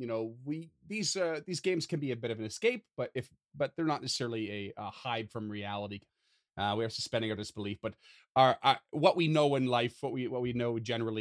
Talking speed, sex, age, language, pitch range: 240 wpm, male, 30-49, English, 105-125 Hz